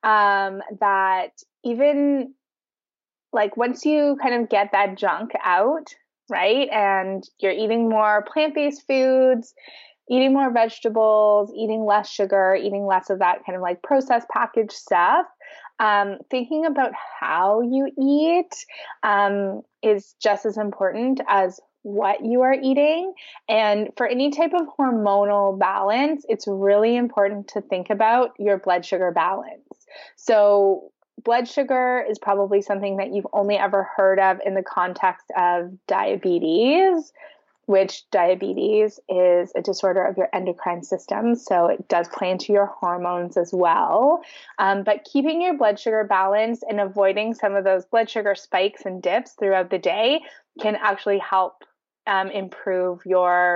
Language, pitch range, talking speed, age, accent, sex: English, 195-250 Hz, 145 wpm, 20-39, American, female